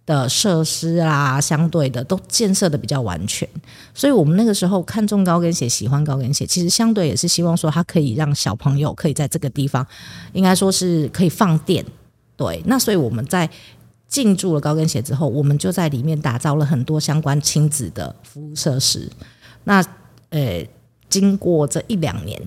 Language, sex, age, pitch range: English, female, 50-69, 135-175 Hz